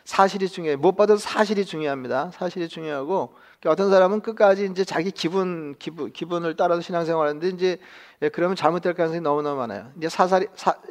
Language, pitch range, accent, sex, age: Korean, 160-200 Hz, native, male, 40-59